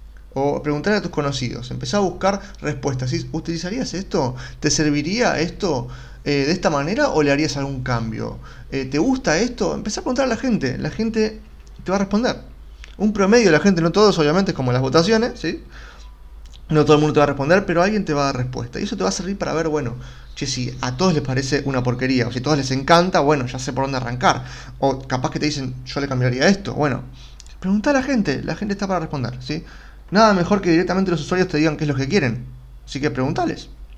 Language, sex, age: Spanish, male, 30-49